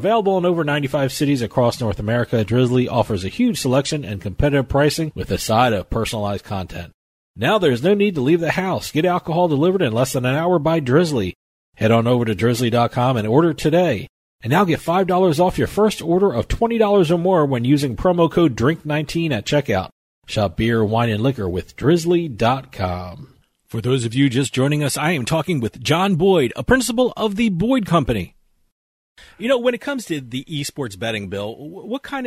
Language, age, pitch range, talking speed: English, 40-59, 115-165 Hz, 195 wpm